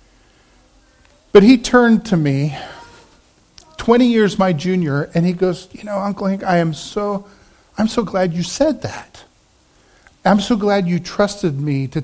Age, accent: 40-59, American